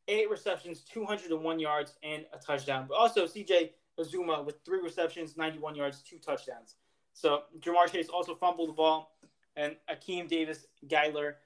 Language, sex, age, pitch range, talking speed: English, male, 20-39, 155-210 Hz, 145 wpm